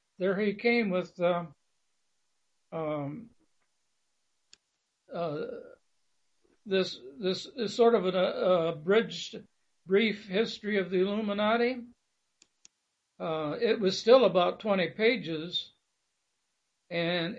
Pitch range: 175-220 Hz